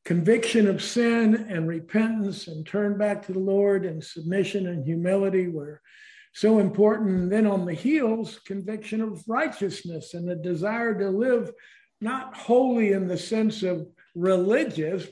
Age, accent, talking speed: 50-69, American, 150 wpm